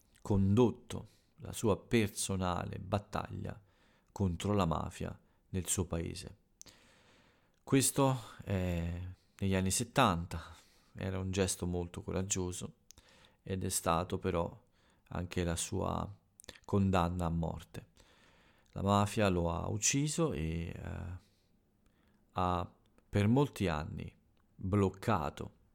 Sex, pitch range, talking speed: male, 90-105 Hz, 100 wpm